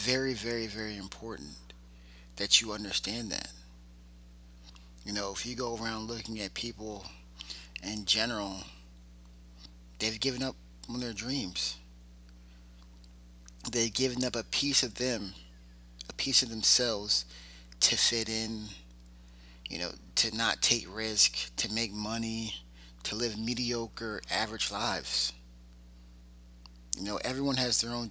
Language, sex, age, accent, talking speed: English, male, 30-49, American, 125 wpm